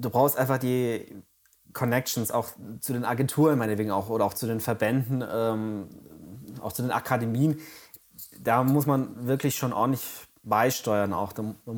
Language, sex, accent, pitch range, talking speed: German, male, German, 105-130 Hz, 155 wpm